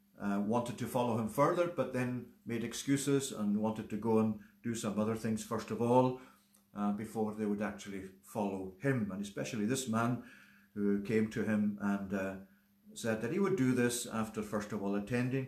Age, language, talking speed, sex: 50-69, English, 195 wpm, male